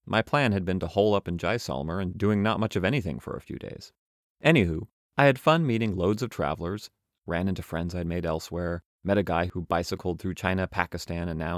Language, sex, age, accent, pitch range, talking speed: English, male, 30-49, American, 85-110 Hz, 225 wpm